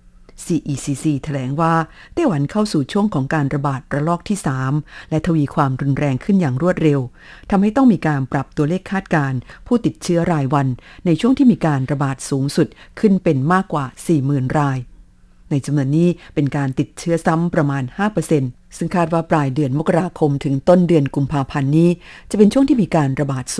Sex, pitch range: female, 140-175 Hz